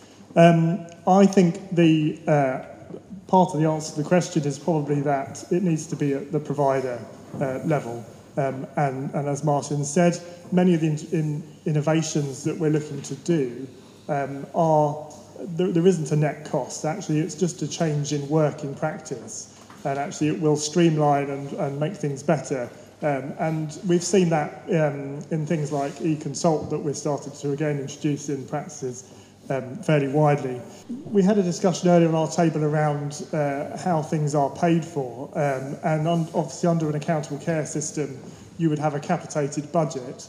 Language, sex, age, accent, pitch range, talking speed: English, male, 30-49, British, 145-170 Hz, 175 wpm